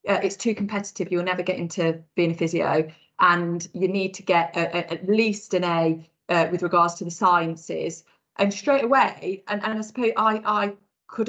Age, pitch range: 30-49, 180-210 Hz